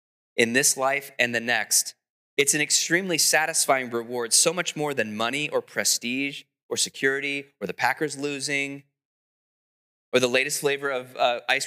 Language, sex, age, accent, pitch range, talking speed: English, male, 20-39, American, 130-160 Hz, 160 wpm